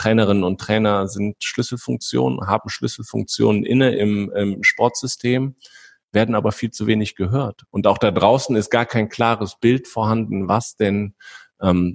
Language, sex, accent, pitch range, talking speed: German, male, German, 90-115 Hz, 150 wpm